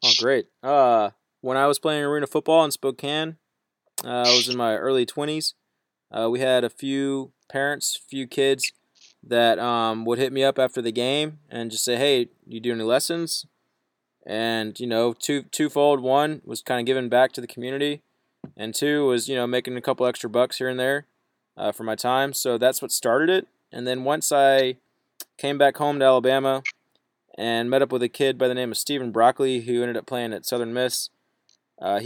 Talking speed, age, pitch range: 200 wpm, 20-39, 120-140 Hz